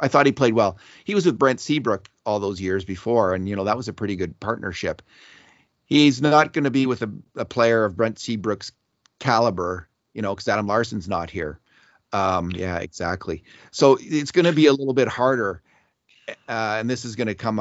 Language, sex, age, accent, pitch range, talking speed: English, male, 40-59, American, 90-120 Hz, 210 wpm